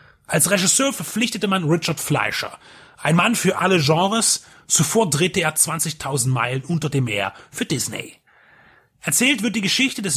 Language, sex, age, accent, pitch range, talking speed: German, male, 30-49, German, 150-205 Hz, 155 wpm